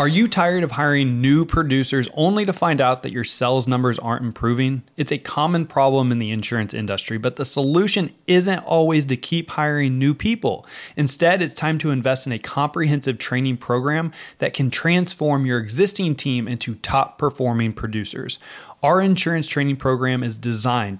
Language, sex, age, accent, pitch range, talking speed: English, male, 20-39, American, 125-165 Hz, 175 wpm